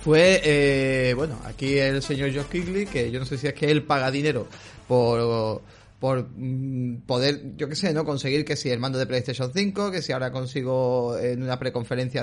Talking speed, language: 215 wpm, Spanish